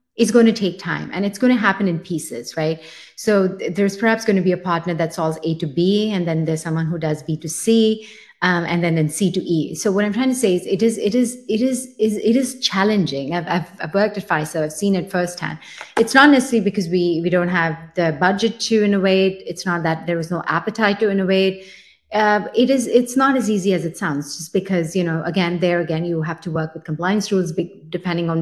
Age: 30-49